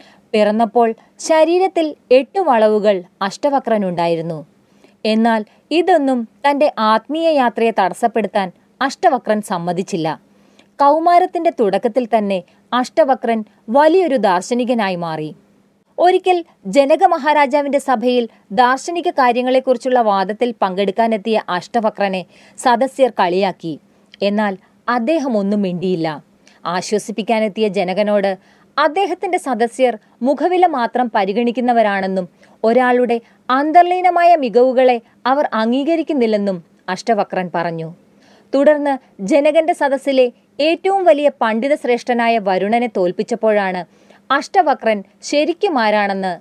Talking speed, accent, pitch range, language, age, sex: 80 wpm, native, 205-280 Hz, Malayalam, 30-49, female